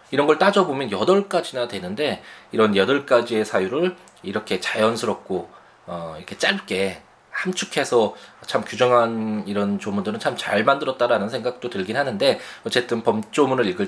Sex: male